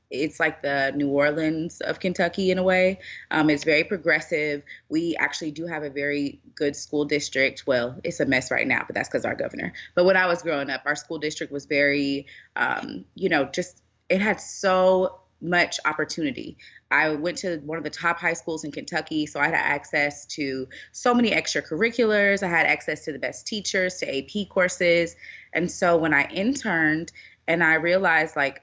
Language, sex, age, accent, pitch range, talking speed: English, female, 20-39, American, 150-185 Hz, 195 wpm